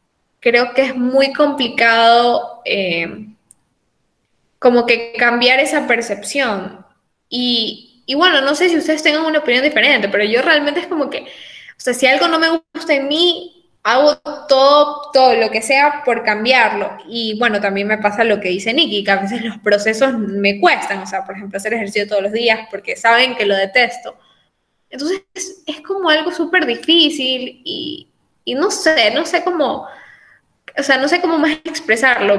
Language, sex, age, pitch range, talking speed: Spanish, female, 10-29, 225-300 Hz, 180 wpm